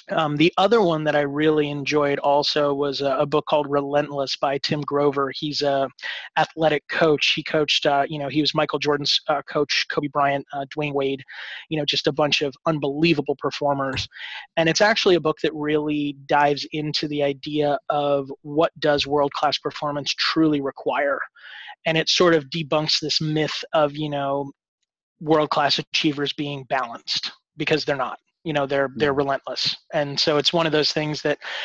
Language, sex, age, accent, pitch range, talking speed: English, male, 30-49, American, 140-155 Hz, 180 wpm